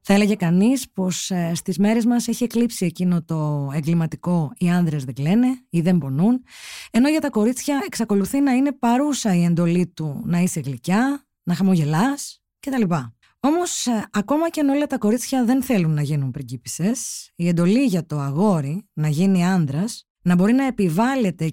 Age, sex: 20-39, female